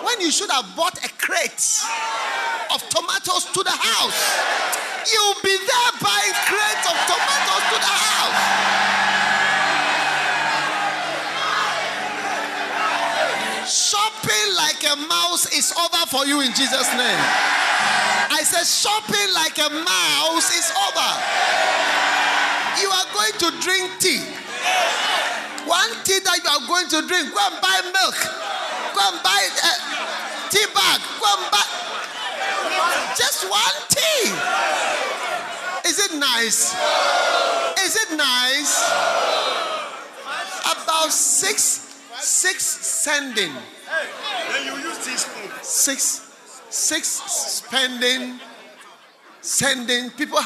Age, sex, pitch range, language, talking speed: 30-49, male, 295-385 Hz, English, 100 wpm